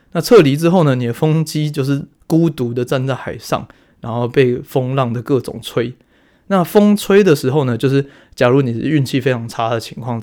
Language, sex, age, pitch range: Chinese, male, 20-39, 120-145 Hz